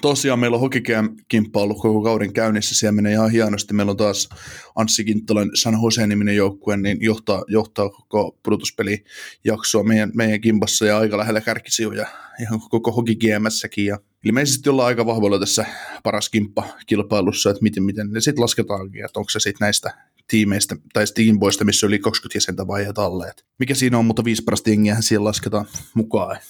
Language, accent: Finnish, native